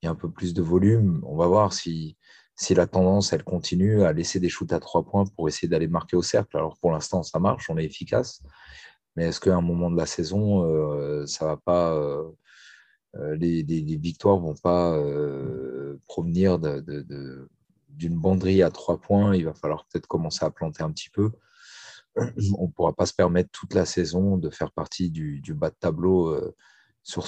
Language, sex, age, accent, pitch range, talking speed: French, male, 40-59, French, 80-95 Hz, 210 wpm